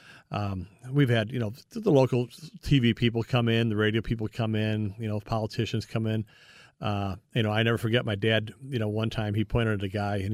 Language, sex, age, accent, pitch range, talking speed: English, male, 40-59, American, 110-125 Hz, 225 wpm